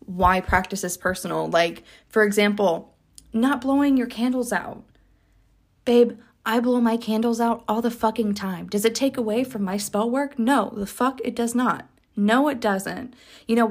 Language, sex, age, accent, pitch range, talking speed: English, female, 20-39, American, 205-250 Hz, 180 wpm